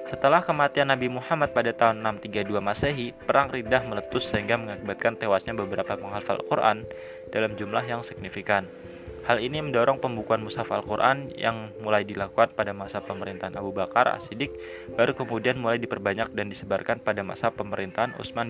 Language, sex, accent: Indonesian, male, native